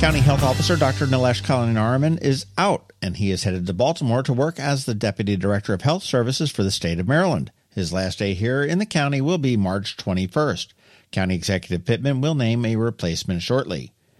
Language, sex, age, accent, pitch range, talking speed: English, male, 50-69, American, 105-145 Hz, 200 wpm